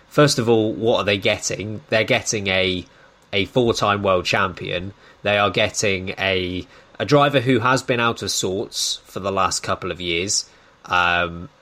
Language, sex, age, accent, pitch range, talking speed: English, male, 20-39, British, 105-135 Hz, 170 wpm